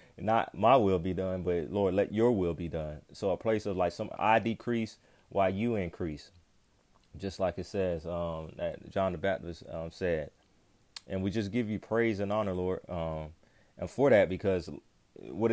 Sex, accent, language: male, American, English